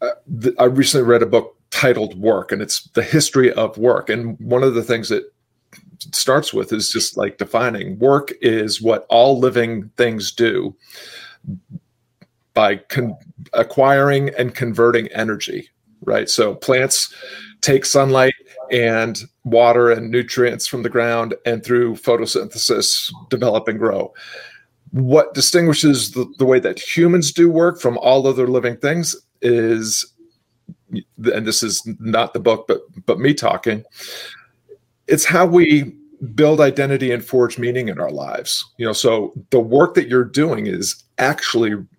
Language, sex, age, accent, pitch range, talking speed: English, male, 40-59, American, 115-145 Hz, 145 wpm